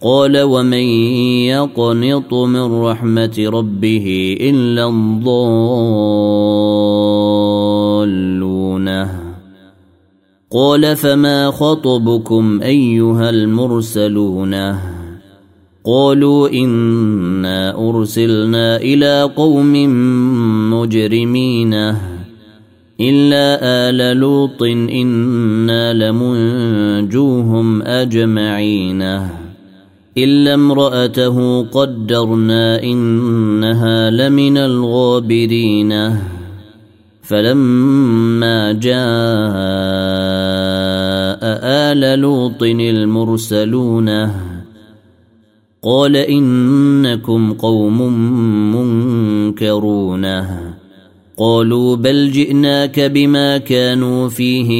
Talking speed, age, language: 50 wpm, 30-49, Arabic